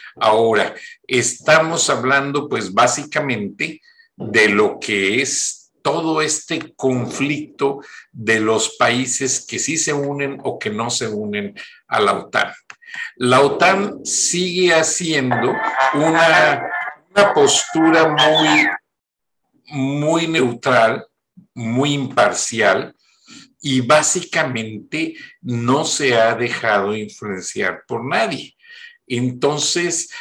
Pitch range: 125-165 Hz